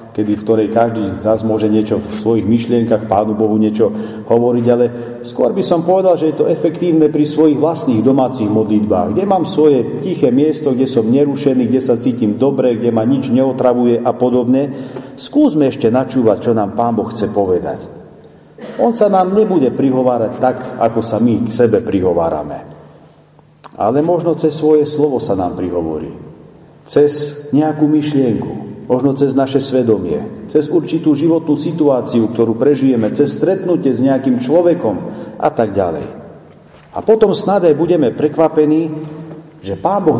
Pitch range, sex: 120-155 Hz, male